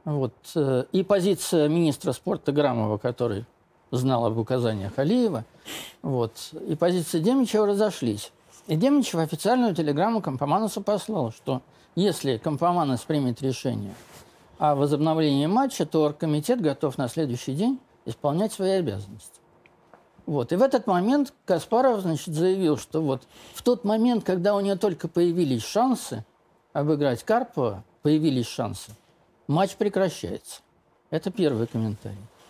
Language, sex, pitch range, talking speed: Russian, male, 125-185 Hz, 125 wpm